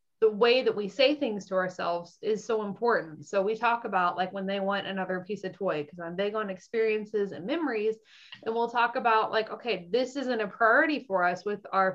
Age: 20-39